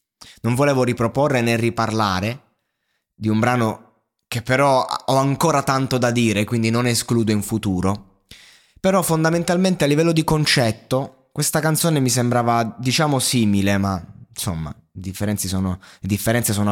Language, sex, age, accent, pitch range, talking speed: Italian, male, 20-39, native, 100-130 Hz, 135 wpm